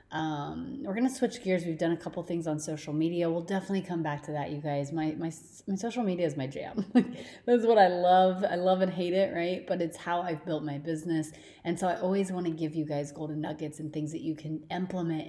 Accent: American